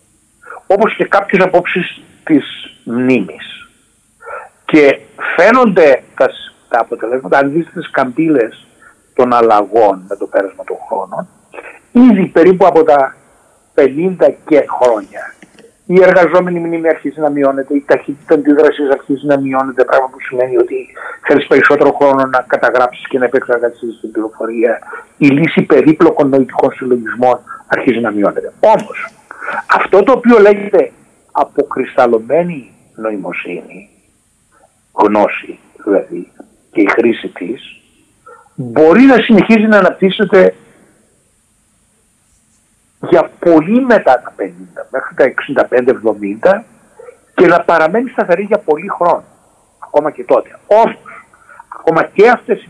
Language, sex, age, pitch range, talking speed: Greek, male, 60-79, 140-225 Hz, 115 wpm